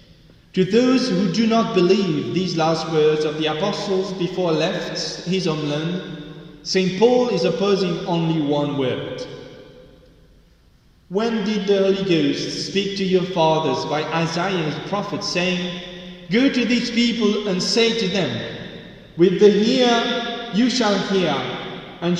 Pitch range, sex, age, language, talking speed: 170-210 Hz, male, 30-49, English, 140 wpm